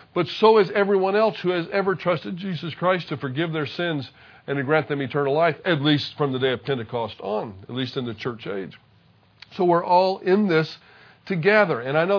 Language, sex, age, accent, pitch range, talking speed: English, male, 50-69, American, 140-180 Hz, 215 wpm